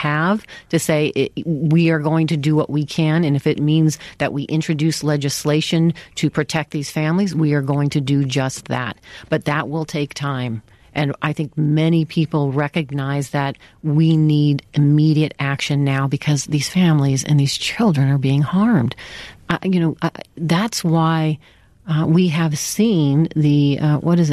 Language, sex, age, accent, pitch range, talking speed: English, female, 40-59, American, 140-165 Hz, 175 wpm